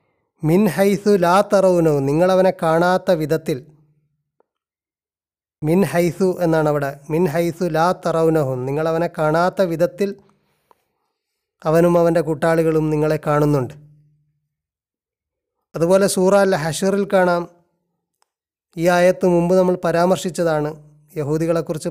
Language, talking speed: Malayalam, 90 wpm